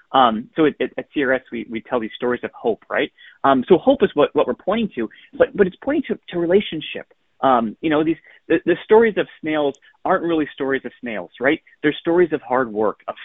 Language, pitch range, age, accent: English, 130-190 Hz, 30-49, American